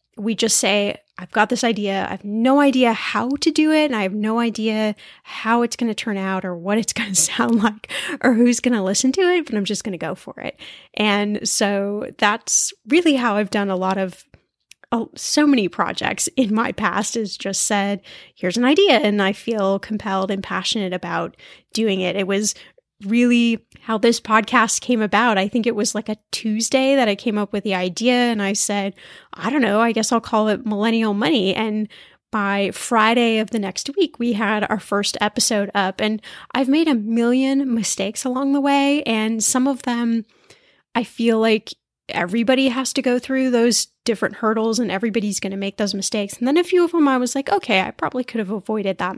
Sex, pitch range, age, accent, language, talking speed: female, 205-245 Hz, 10-29, American, English, 215 wpm